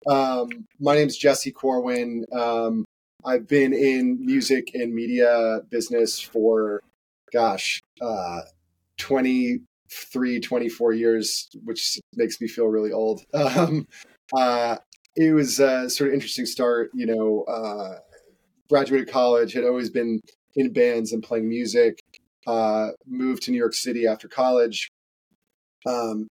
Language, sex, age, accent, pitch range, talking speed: English, male, 30-49, American, 110-130 Hz, 130 wpm